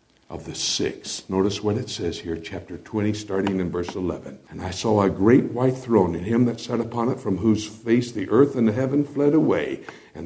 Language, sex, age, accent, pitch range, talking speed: English, male, 60-79, American, 95-130 Hz, 220 wpm